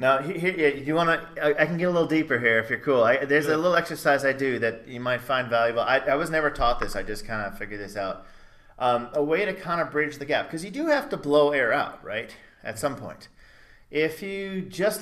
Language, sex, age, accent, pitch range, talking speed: English, male, 30-49, American, 115-155 Hz, 250 wpm